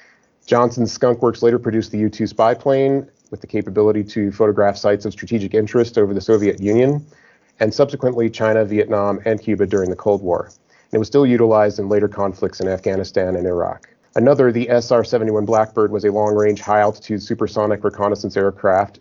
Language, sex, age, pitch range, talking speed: English, male, 40-59, 100-115 Hz, 170 wpm